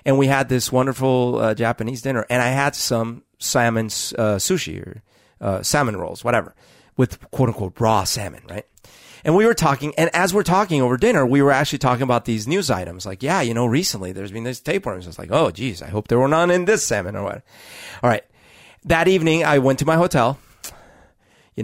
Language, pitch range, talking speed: English, 120-170 Hz, 215 wpm